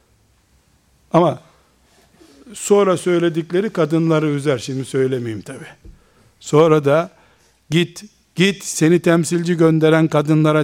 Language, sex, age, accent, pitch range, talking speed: Turkish, male, 60-79, native, 150-200 Hz, 90 wpm